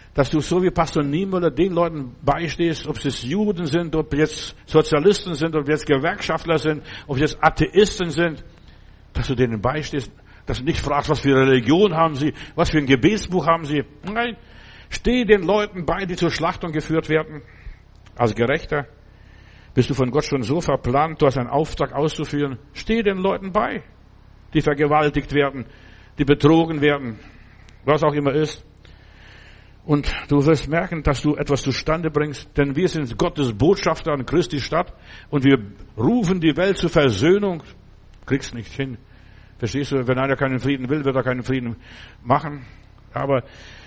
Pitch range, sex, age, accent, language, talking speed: 120-160 Hz, male, 60-79, German, German, 170 wpm